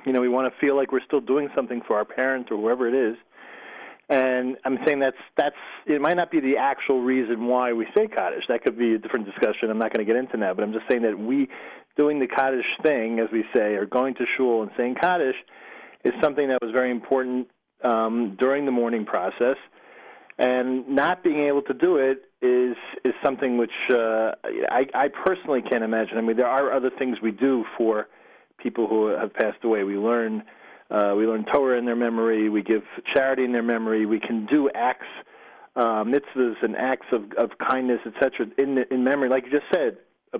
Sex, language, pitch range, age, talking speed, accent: male, English, 115-135 Hz, 40-59, 215 wpm, American